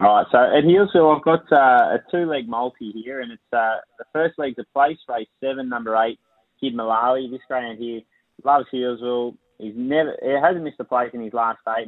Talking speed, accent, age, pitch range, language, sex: 210 wpm, Australian, 20-39, 115-135 Hz, English, male